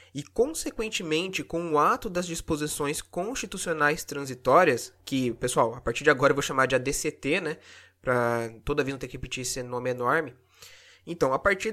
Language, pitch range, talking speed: Portuguese, 135-205 Hz, 175 wpm